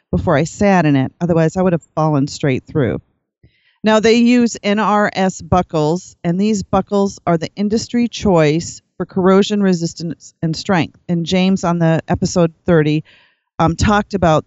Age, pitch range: 40-59, 155-195 Hz